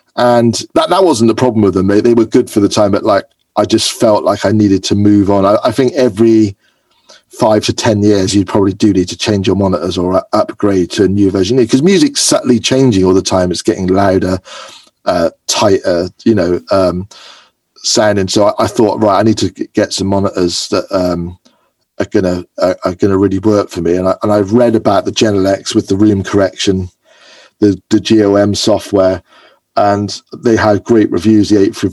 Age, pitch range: 40-59, 95-110 Hz